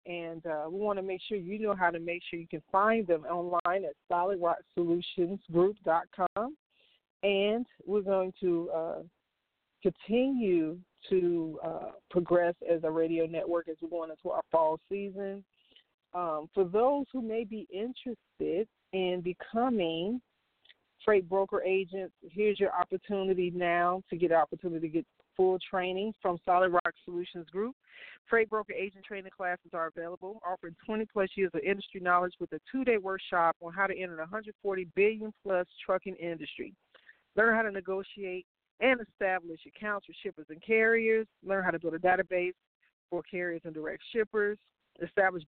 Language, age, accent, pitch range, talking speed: English, 40-59, American, 175-210 Hz, 155 wpm